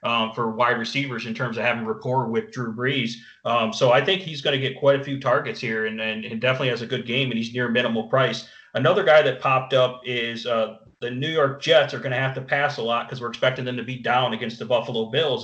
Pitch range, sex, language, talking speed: 115-135 Hz, male, English, 260 wpm